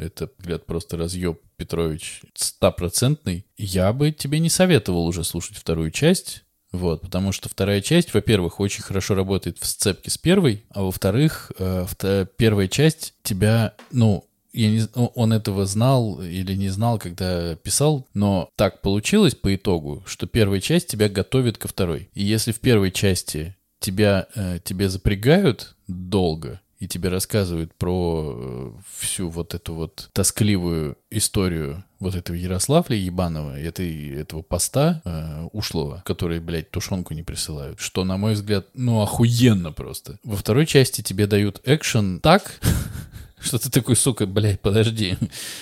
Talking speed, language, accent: 145 wpm, Russian, native